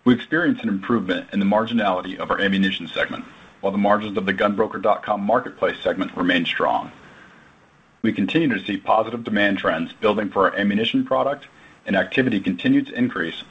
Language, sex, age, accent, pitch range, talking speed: English, male, 40-59, American, 100-125 Hz, 170 wpm